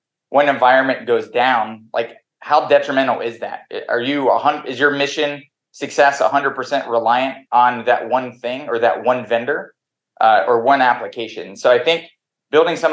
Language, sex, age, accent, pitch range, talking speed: English, male, 20-39, American, 120-145 Hz, 160 wpm